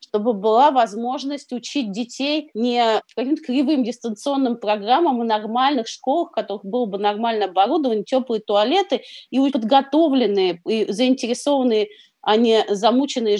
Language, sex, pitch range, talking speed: Russian, female, 195-250 Hz, 130 wpm